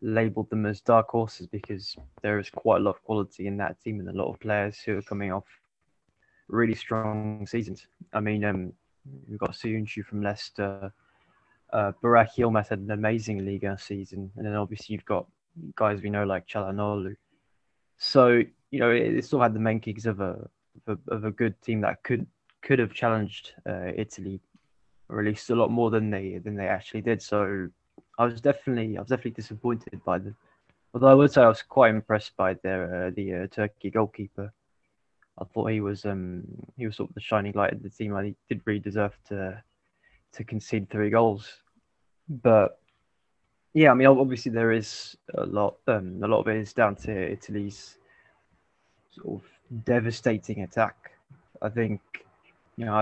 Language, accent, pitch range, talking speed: English, British, 100-115 Hz, 185 wpm